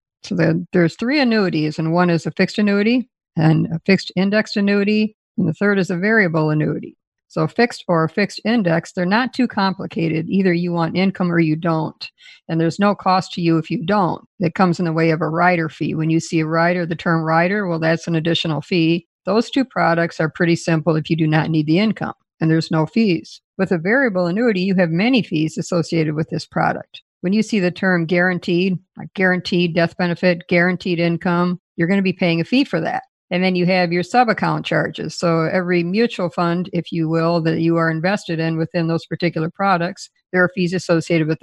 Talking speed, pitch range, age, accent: 215 wpm, 165-195 Hz, 50-69, American